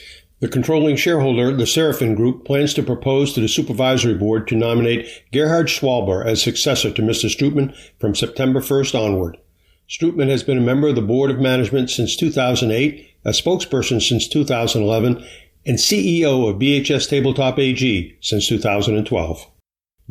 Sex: male